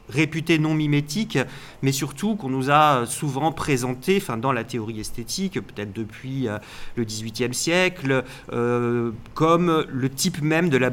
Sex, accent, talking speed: male, French, 150 wpm